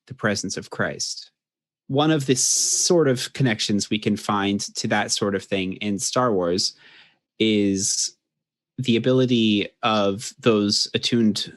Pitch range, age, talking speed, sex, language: 100-115 Hz, 30-49, 140 wpm, male, English